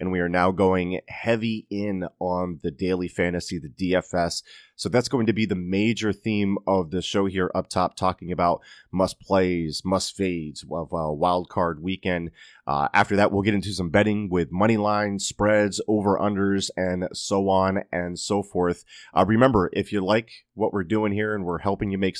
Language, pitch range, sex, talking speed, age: English, 90-105 Hz, male, 185 wpm, 30-49